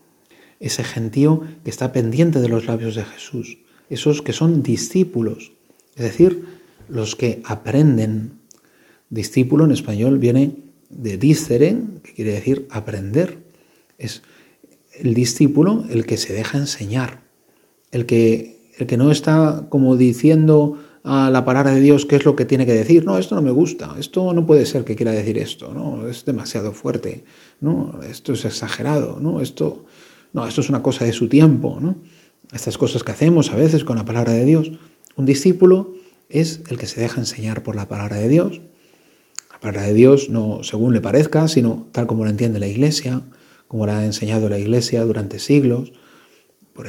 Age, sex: 40-59, male